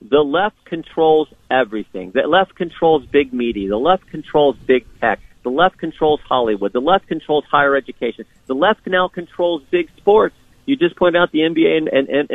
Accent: American